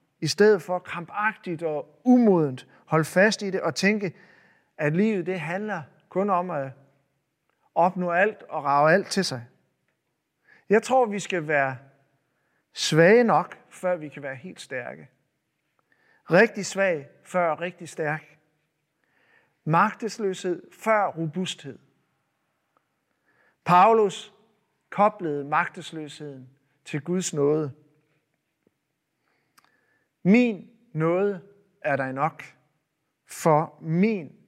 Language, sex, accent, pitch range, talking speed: Danish, male, native, 150-200 Hz, 105 wpm